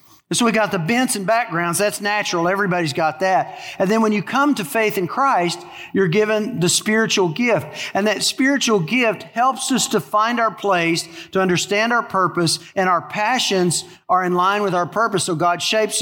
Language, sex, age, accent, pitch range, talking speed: English, male, 50-69, American, 165-205 Hz, 195 wpm